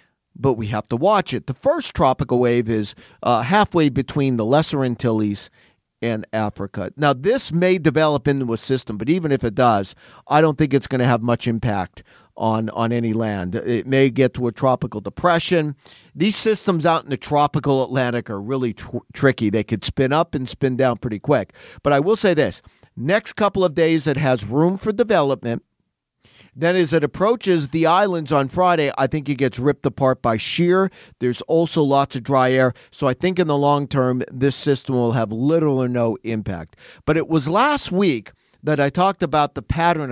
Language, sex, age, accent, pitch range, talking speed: English, male, 50-69, American, 125-165 Hz, 195 wpm